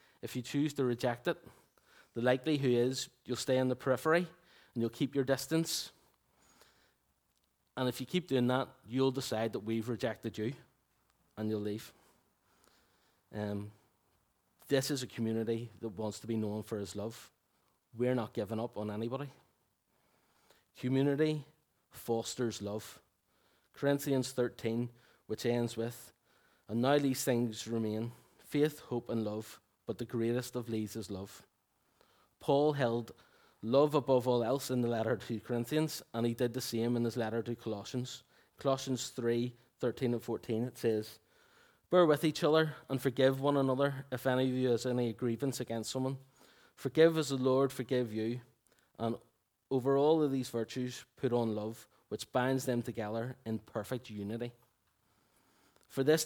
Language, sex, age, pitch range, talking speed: English, male, 30-49, 115-135 Hz, 155 wpm